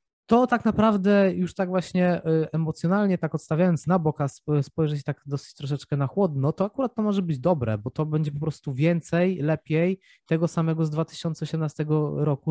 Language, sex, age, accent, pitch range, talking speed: Polish, male, 20-39, native, 135-165 Hz, 175 wpm